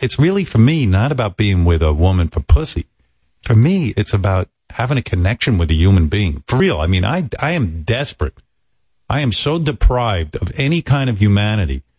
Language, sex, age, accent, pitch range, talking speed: English, male, 50-69, American, 90-140 Hz, 200 wpm